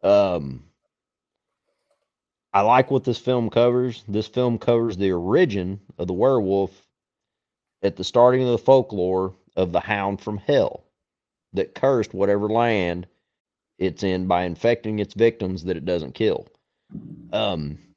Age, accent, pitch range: 40-59, American, 95-115 Hz